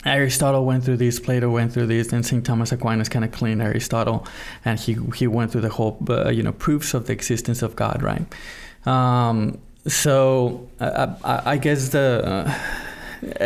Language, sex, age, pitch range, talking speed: English, male, 20-39, 115-140 Hz, 185 wpm